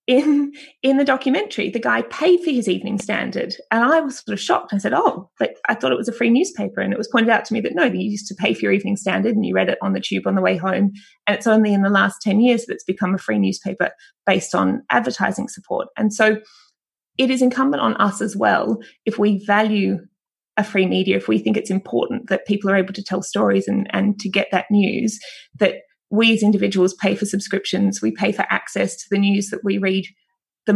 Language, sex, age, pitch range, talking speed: English, female, 20-39, 185-230 Hz, 245 wpm